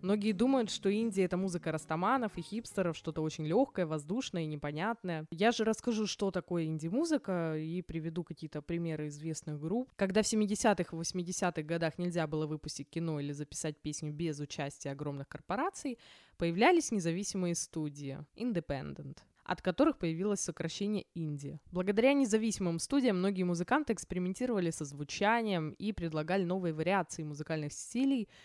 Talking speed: 140 wpm